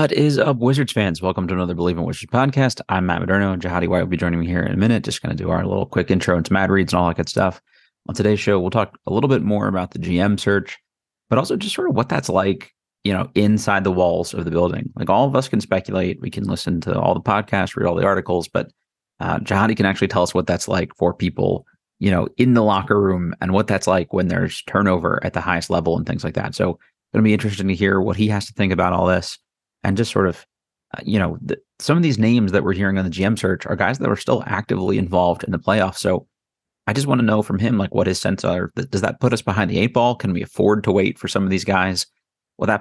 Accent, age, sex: American, 30-49, male